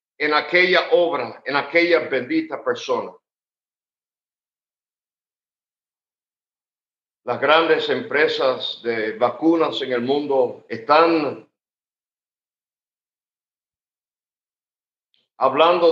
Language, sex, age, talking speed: English, male, 50-69, 65 wpm